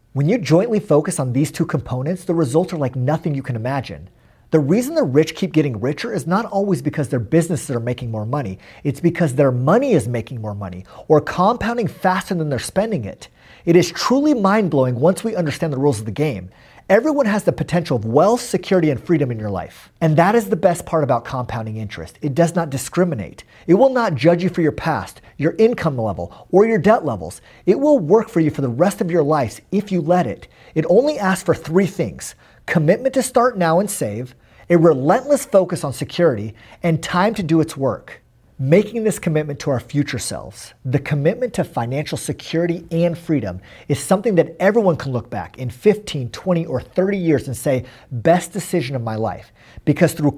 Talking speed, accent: 205 wpm, American